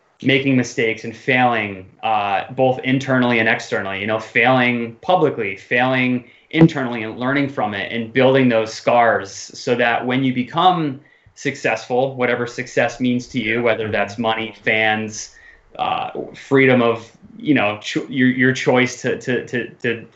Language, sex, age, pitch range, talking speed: English, male, 20-39, 115-135 Hz, 150 wpm